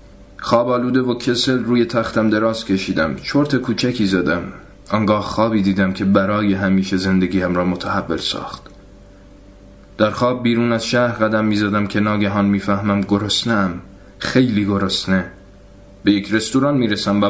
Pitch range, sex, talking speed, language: 95-115 Hz, male, 140 wpm, Persian